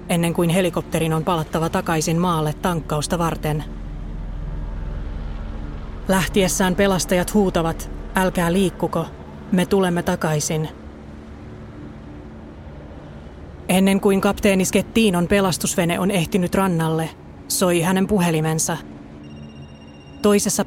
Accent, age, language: native, 30-49, Finnish